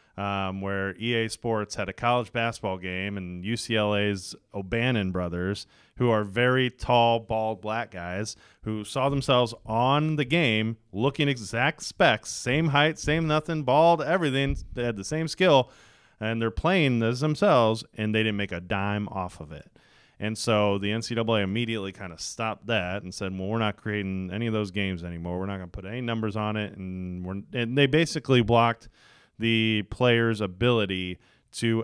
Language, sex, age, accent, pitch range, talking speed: English, male, 30-49, American, 95-120 Hz, 175 wpm